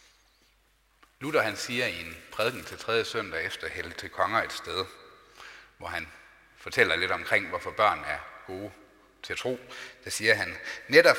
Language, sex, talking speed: Danish, male, 160 wpm